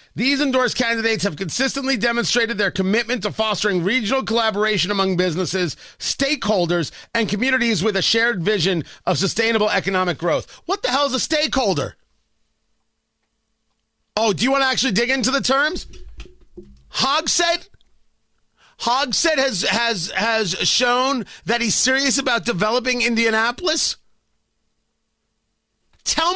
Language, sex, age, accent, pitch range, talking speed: English, male, 30-49, American, 210-275 Hz, 125 wpm